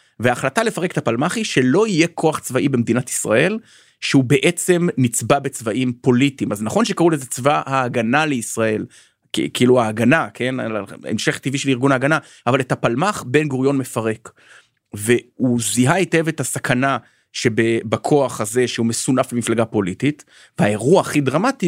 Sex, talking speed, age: male, 145 wpm, 30-49